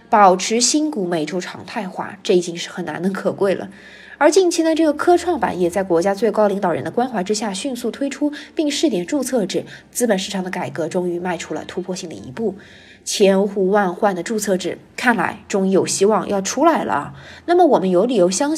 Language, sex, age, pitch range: Chinese, female, 20-39, 180-275 Hz